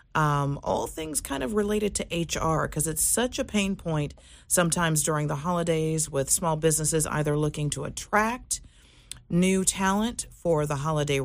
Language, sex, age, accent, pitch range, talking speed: English, female, 40-59, American, 155-205 Hz, 160 wpm